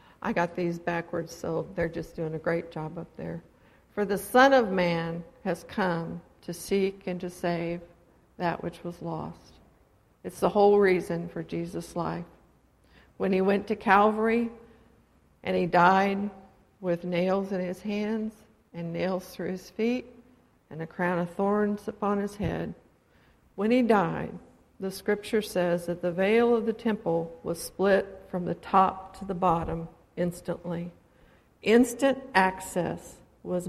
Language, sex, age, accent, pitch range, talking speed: English, female, 60-79, American, 170-205 Hz, 155 wpm